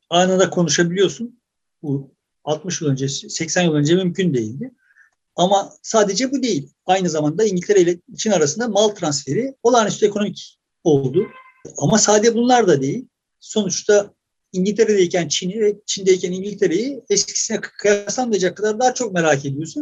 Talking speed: 135 wpm